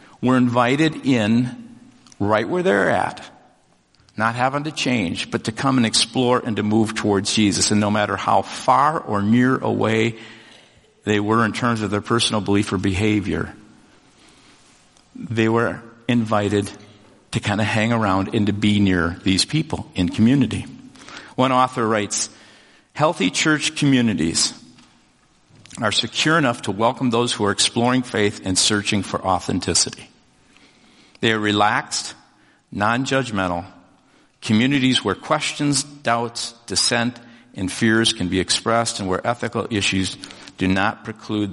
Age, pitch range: 50-69, 100-120 Hz